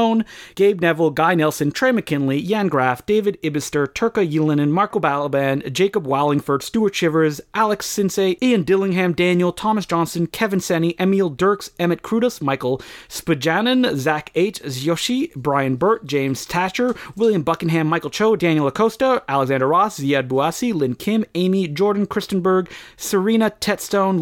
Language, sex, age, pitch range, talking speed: English, male, 30-49, 150-210 Hz, 140 wpm